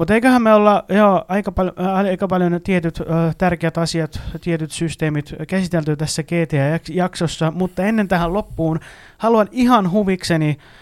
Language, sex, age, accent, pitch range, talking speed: Finnish, male, 30-49, native, 155-195 Hz, 120 wpm